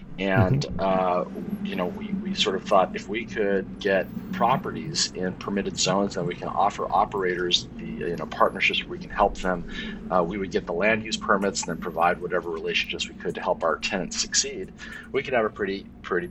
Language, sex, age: English, male, 40-59